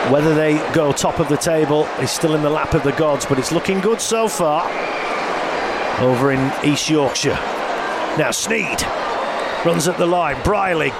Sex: male